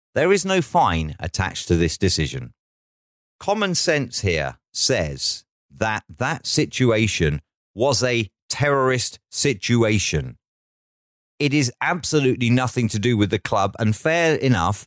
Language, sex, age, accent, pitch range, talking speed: English, male, 40-59, British, 95-125 Hz, 125 wpm